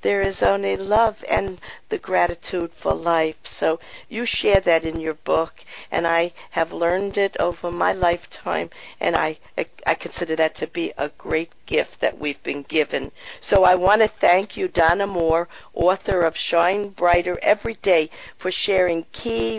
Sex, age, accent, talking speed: female, 50-69, American, 170 wpm